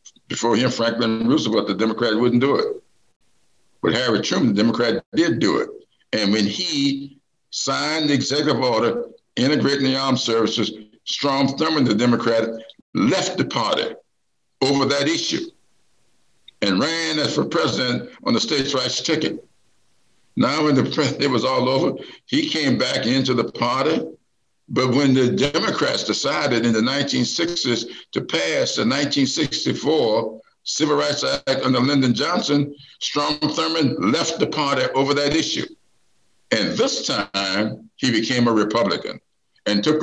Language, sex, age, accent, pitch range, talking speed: English, male, 60-79, American, 120-155 Hz, 145 wpm